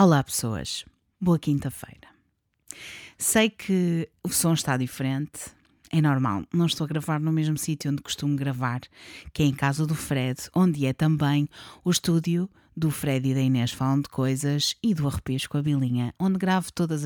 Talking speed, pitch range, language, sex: 175 wpm, 135-180 Hz, Portuguese, female